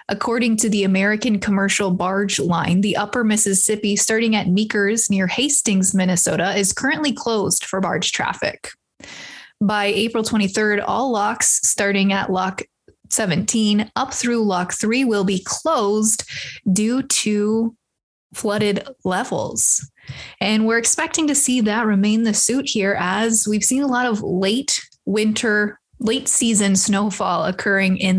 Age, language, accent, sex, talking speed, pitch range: 20-39, English, American, female, 140 wpm, 195-230 Hz